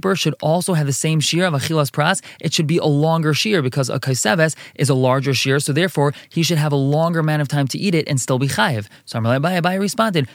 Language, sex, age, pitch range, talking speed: English, male, 20-39, 140-170 Hz, 255 wpm